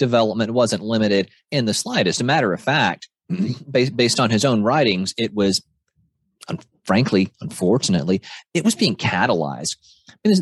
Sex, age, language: male, 30-49, English